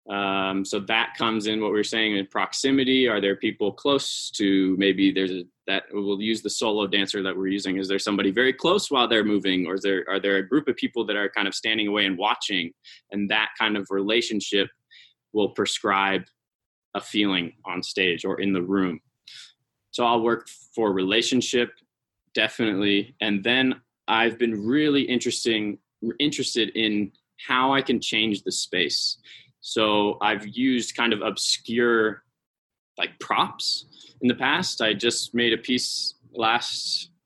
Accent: American